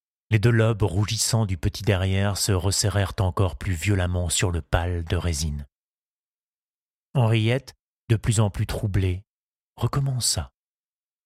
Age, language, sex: 30-49, French, male